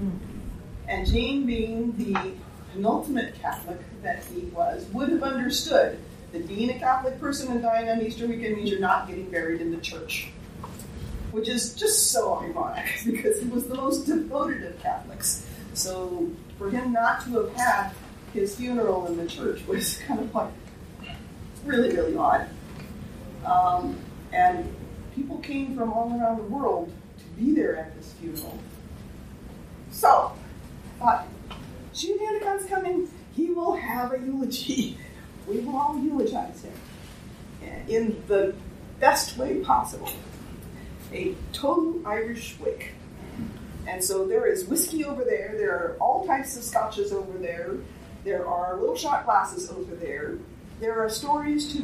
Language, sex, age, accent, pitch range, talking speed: English, female, 40-59, American, 215-300 Hz, 145 wpm